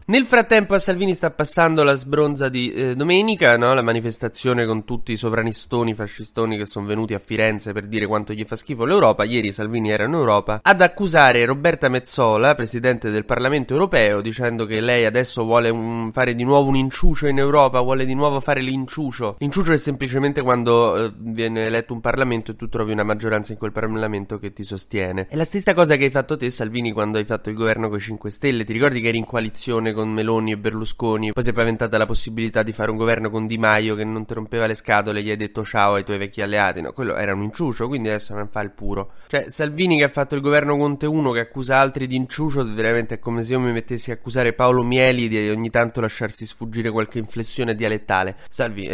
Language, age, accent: Italian, 20-39, native